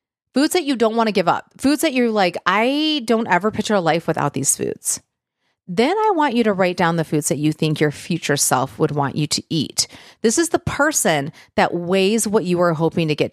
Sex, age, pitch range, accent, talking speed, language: female, 40-59, 155-225 Hz, American, 240 wpm, English